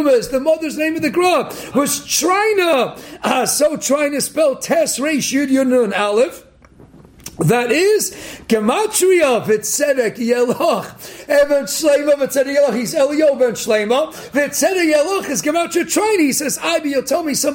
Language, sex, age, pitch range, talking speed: English, male, 40-59, 255-330 Hz, 155 wpm